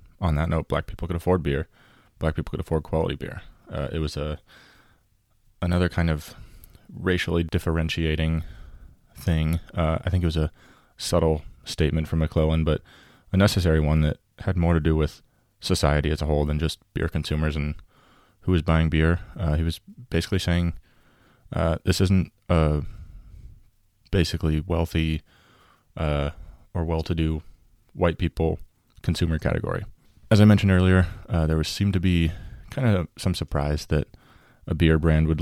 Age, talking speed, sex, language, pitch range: 20-39, 160 wpm, male, English, 80-90 Hz